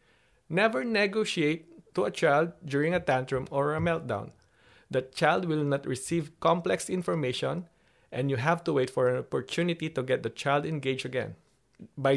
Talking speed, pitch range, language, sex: 165 wpm, 130-170 Hz, English, male